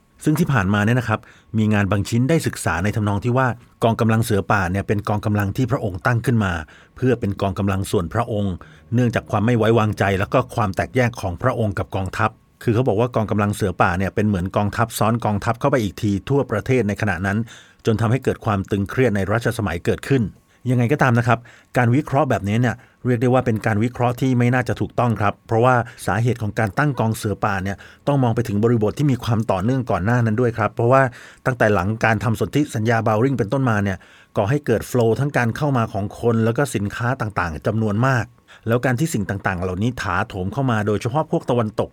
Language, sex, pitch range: Thai, male, 105-125 Hz